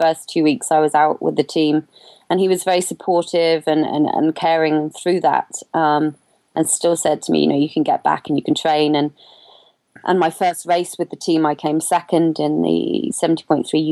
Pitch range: 150-170 Hz